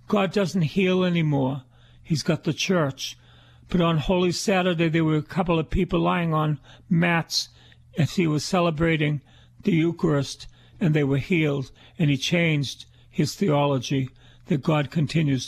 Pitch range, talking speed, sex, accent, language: 125-180 Hz, 150 wpm, male, American, English